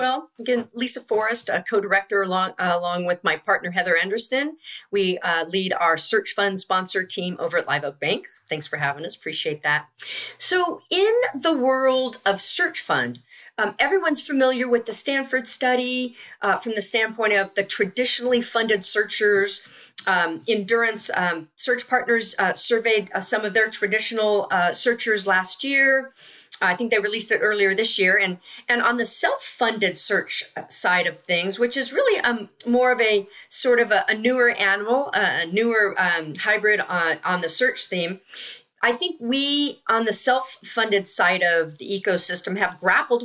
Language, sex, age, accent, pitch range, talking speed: English, female, 40-59, American, 190-250 Hz, 170 wpm